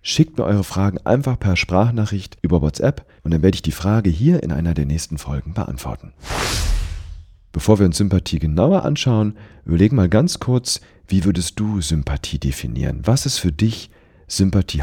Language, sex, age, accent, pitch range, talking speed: German, male, 40-59, German, 75-105 Hz, 170 wpm